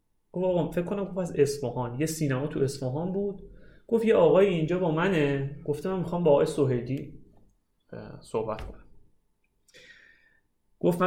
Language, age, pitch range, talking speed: Persian, 30-49, 140-200 Hz, 130 wpm